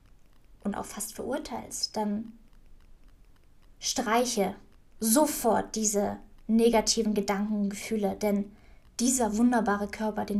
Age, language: 20-39, German